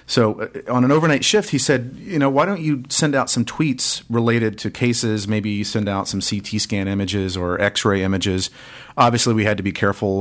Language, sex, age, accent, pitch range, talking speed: English, male, 40-59, American, 100-125 Hz, 205 wpm